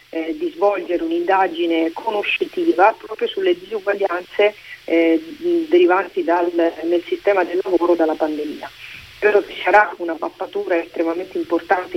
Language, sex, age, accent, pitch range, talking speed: Italian, female, 40-59, native, 165-230 Hz, 120 wpm